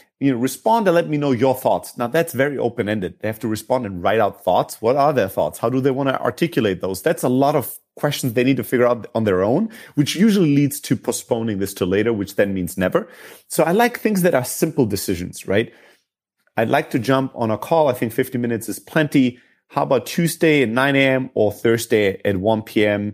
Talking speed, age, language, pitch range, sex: 235 wpm, 30-49, English, 105-145 Hz, male